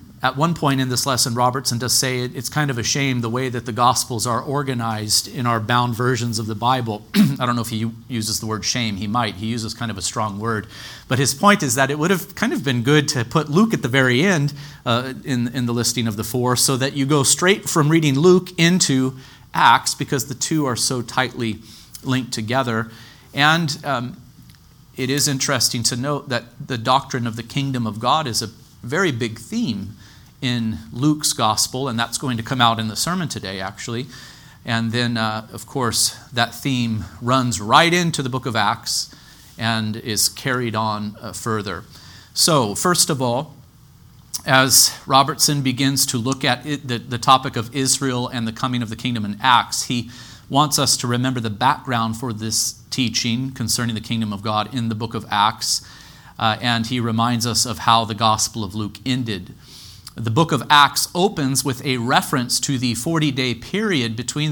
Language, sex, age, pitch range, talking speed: English, male, 40-59, 115-135 Hz, 200 wpm